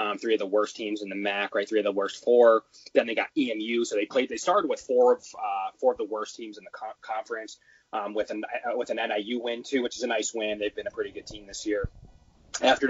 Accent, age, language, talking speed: American, 20-39, English, 280 wpm